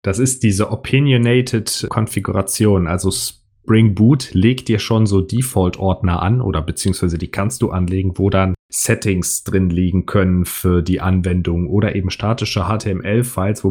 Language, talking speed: German, 145 wpm